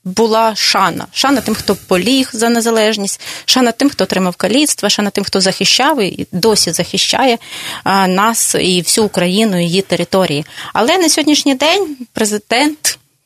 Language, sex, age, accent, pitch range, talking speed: Russian, female, 20-39, native, 185-255 Hz, 150 wpm